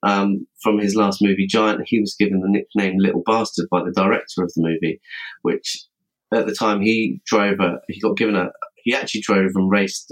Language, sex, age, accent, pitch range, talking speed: English, male, 30-49, British, 90-105 Hz, 210 wpm